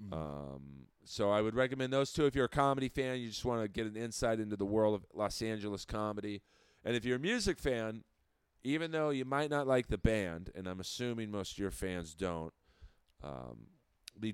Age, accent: 40-59, American